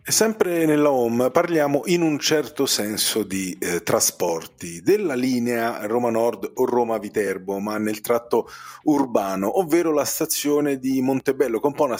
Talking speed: 160 wpm